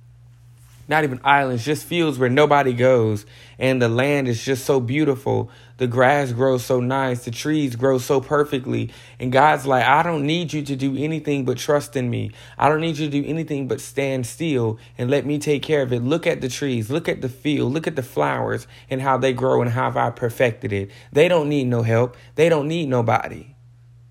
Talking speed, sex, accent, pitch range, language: 215 wpm, male, American, 120-145 Hz, English